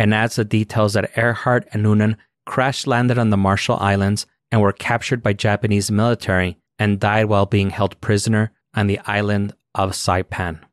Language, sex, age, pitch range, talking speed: English, male, 30-49, 100-115 Hz, 170 wpm